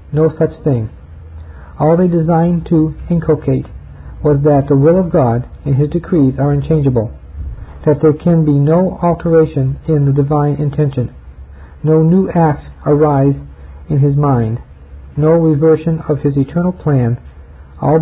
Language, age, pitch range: English, 50-69, 130-160 Hz